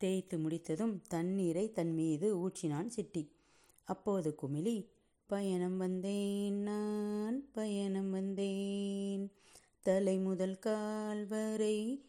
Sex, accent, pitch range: female, native, 165-210 Hz